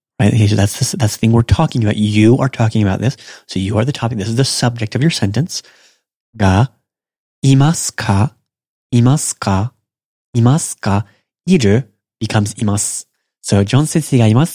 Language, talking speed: English, 140 wpm